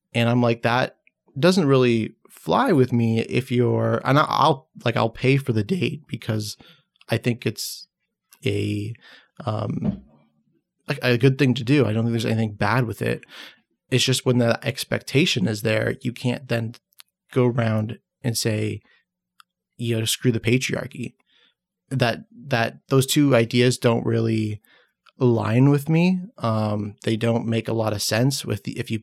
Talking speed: 165 wpm